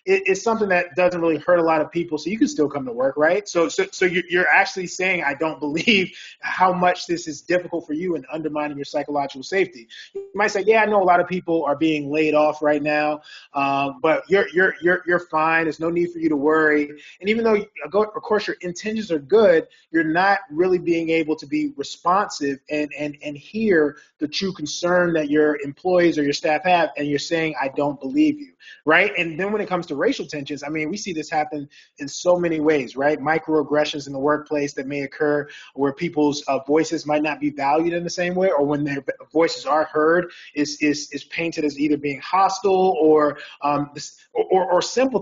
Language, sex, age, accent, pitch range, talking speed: English, male, 20-39, American, 150-185 Hz, 220 wpm